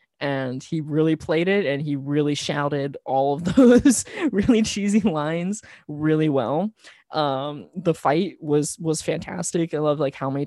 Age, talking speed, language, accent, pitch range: 20-39, 160 wpm, English, American, 140-200 Hz